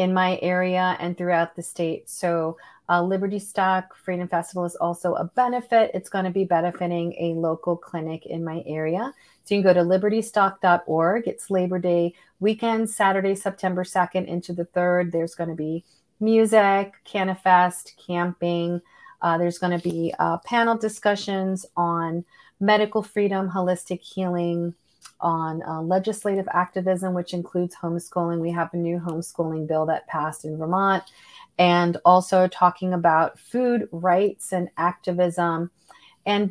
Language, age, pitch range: English, 30-49, 170-195 Hz